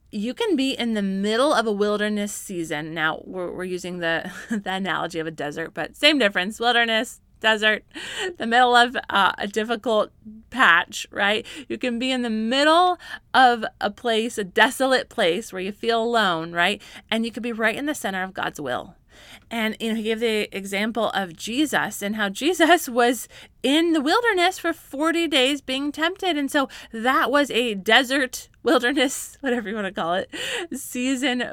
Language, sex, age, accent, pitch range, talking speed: English, female, 20-39, American, 210-285 Hz, 185 wpm